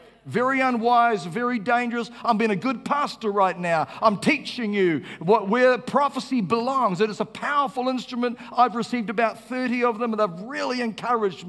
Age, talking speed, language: 50-69, 165 wpm, English